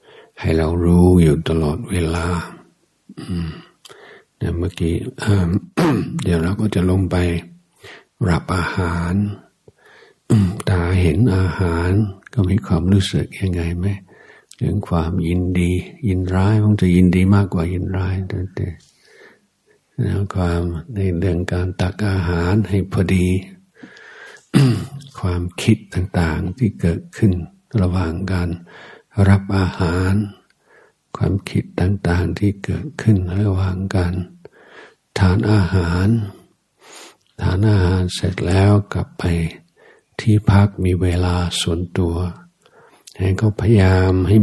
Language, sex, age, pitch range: Thai, male, 60-79, 85-100 Hz